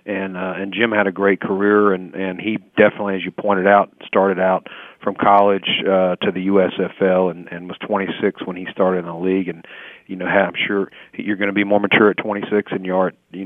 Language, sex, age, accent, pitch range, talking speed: English, male, 40-59, American, 95-110 Hz, 225 wpm